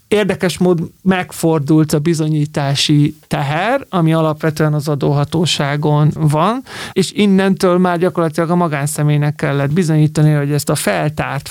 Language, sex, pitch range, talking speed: Hungarian, male, 150-180 Hz, 120 wpm